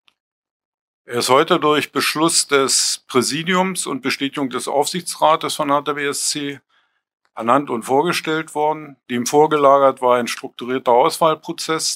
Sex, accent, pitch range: male, German, 120-145 Hz